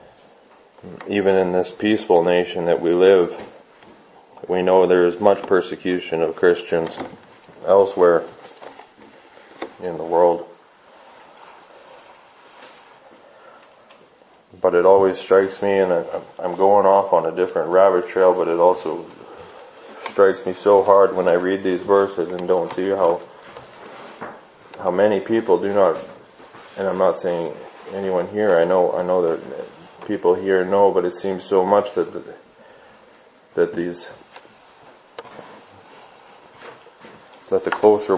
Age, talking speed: 20-39, 130 wpm